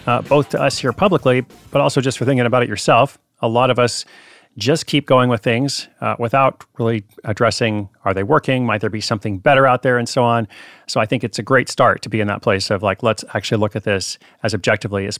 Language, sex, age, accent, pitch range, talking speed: English, male, 40-59, American, 110-130 Hz, 245 wpm